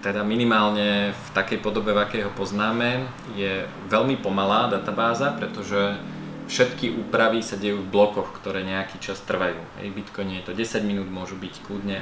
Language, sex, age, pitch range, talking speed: Slovak, male, 20-39, 95-110 Hz, 160 wpm